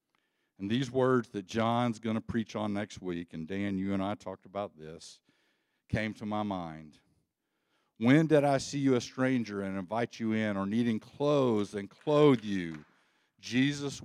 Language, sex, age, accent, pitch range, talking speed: English, male, 50-69, American, 95-120 Hz, 175 wpm